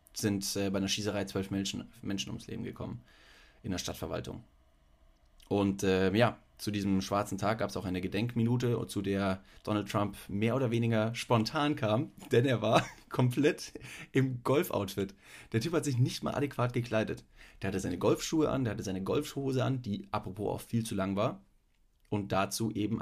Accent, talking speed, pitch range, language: German, 175 wpm, 95-110 Hz, German